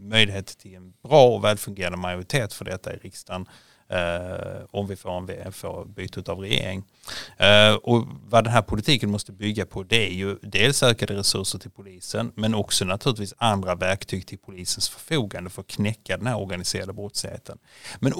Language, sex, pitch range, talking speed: Swedish, male, 95-115 Hz, 170 wpm